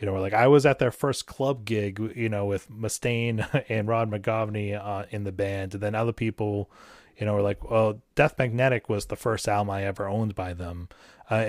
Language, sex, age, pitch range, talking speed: English, male, 30-49, 100-125 Hz, 220 wpm